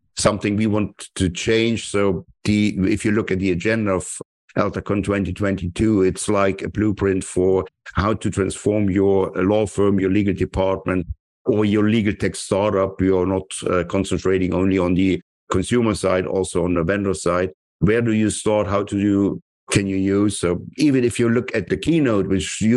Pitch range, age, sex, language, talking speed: 95-105 Hz, 50-69, male, English, 185 wpm